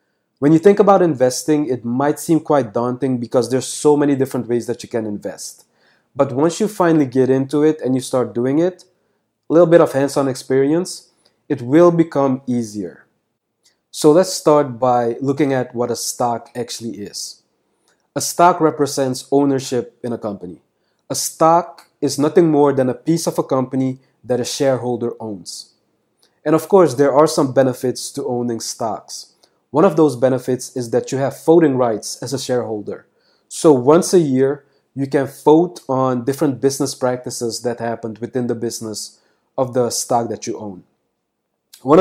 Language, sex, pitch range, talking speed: English, male, 125-150 Hz, 175 wpm